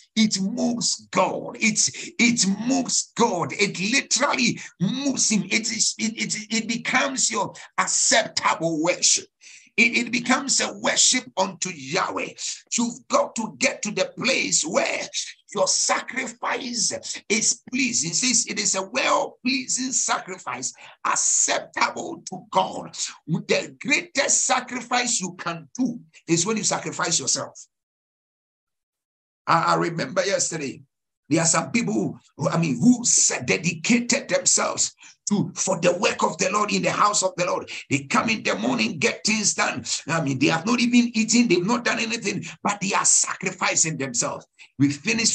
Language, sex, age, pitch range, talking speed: English, male, 60-79, 185-245 Hz, 140 wpm